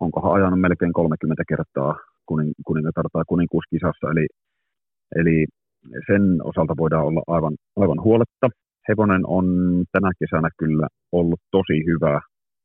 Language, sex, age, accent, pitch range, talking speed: Finnish, male, 30-49, native, 80-90 Hz, 115 wpm